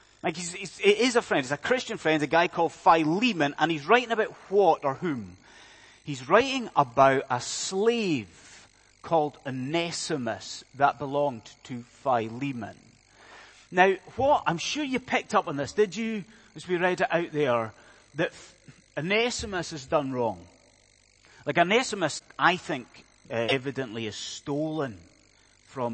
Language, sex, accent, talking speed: English, male, British, 145 wpm